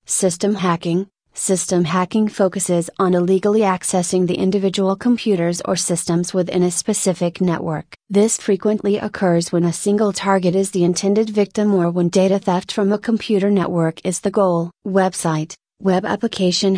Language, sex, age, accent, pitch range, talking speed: English, female, 30-49, American, 175-205 Hz, 150 wpm